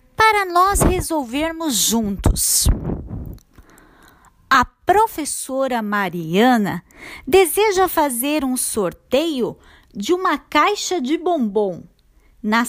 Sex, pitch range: female, 230-345 Hz